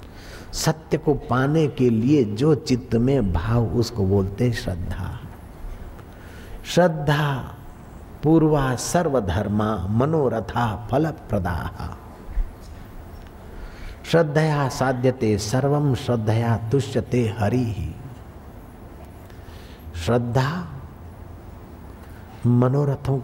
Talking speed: 70 wpm